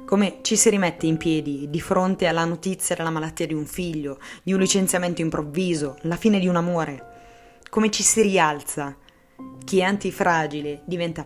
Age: 20-39